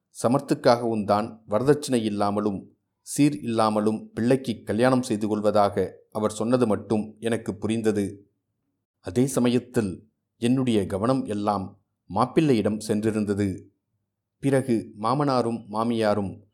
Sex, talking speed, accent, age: male, 85 wpm, native, 30-49